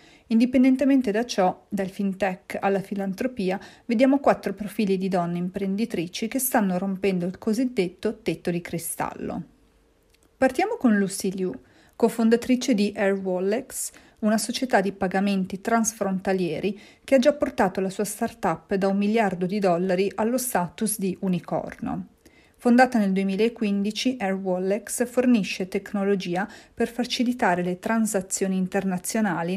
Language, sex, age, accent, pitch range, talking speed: Italian, female, 40-59, native, 185-230 Hz, 125 wpm